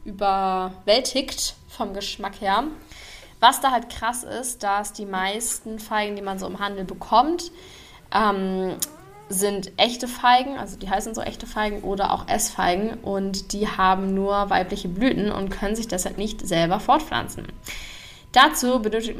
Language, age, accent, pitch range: German, 10-29, German, 190-230 Hz